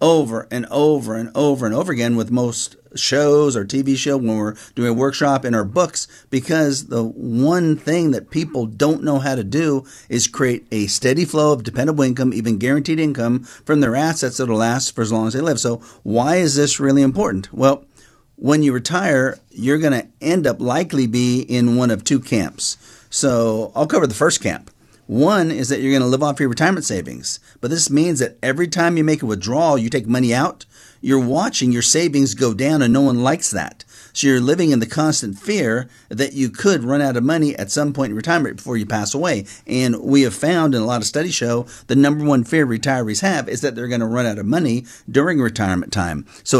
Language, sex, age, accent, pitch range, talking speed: English, male, 40-59, American, 115-145 Hz, 220 wpm